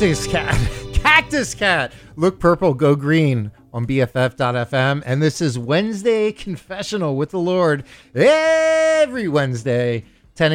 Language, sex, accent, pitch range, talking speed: English, male, American, 115-160 Hz, 120 wpm